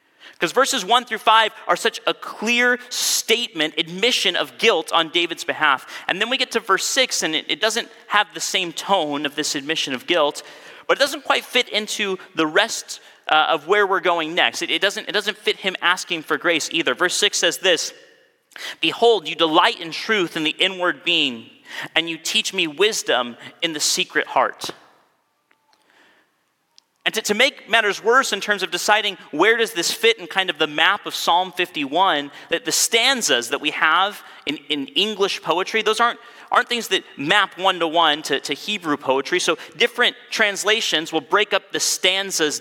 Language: English